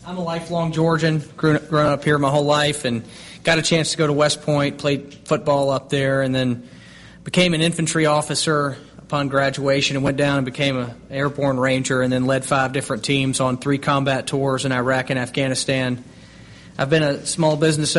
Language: English